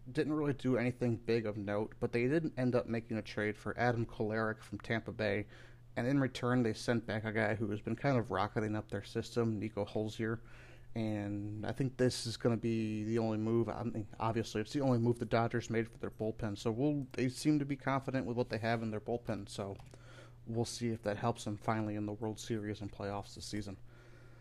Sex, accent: male, American